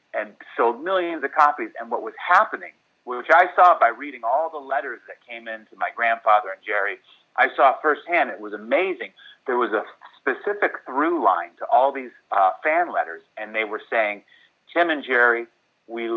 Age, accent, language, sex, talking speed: 30-49, American, English, male, 190 wpm